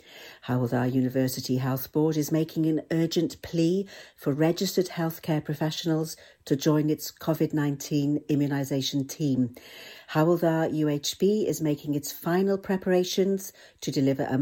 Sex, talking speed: female, 120 wpm